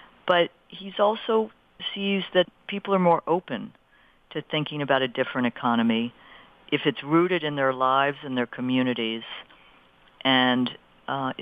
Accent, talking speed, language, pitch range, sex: American, 135 wpm, English, 125-155 Hz, female